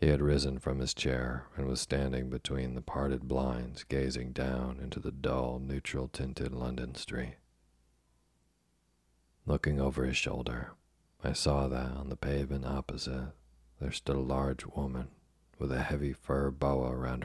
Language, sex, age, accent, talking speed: English, male, 40-59, American, 150 wpm